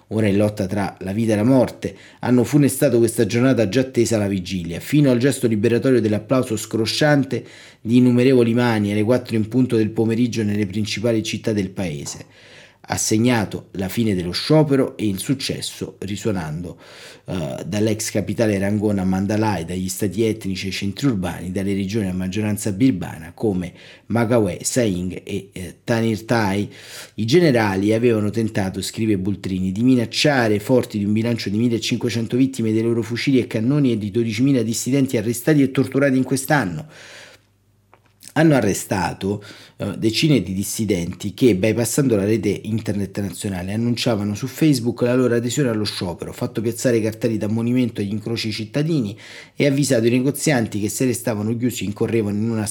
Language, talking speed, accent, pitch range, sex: Italian, 155 wpm, native, 105-125 Hz, male